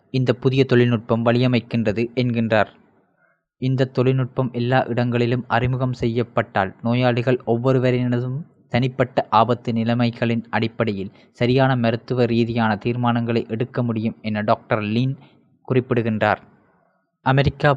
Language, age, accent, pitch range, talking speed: Tamil, 20-39, native, 115-130 Hz, 95 wpm